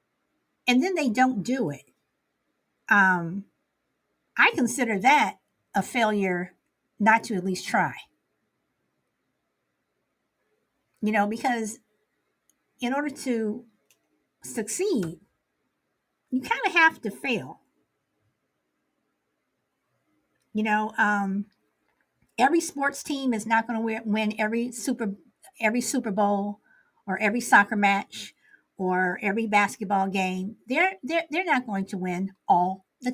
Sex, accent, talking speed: female, American, 115 wpm